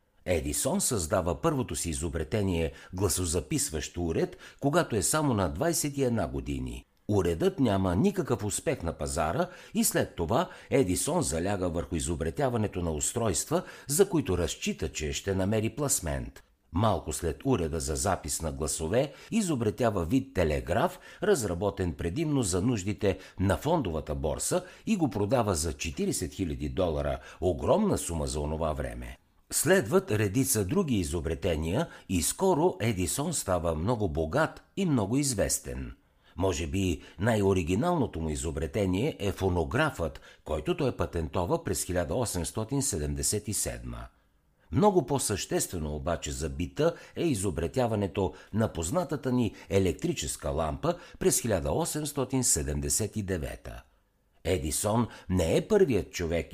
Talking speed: 115 wpm